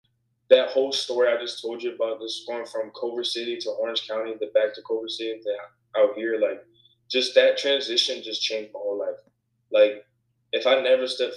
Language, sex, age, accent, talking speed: English, male, 20-39, American, 200 wpm